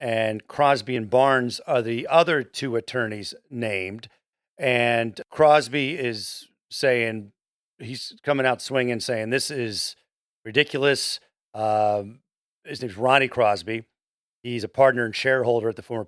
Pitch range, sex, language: 120-145 Hz, male, English